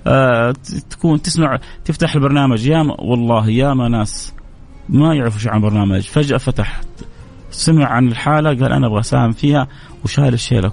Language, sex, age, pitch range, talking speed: English, male, 30-49, 130-160 Hz, 135 wpm